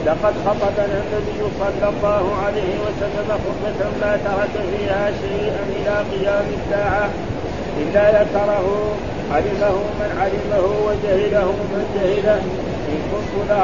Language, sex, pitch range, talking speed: Arabic, male, 200-205 Hz, 115 wpm